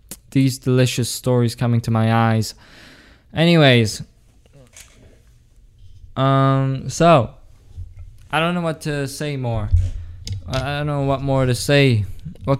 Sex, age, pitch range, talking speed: male, 20-39, 125-165 Hz, 120 wpm